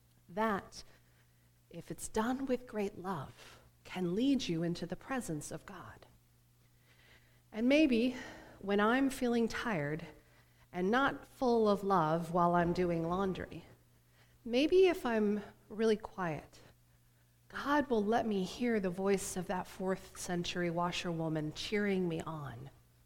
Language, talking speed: English, 130 wpm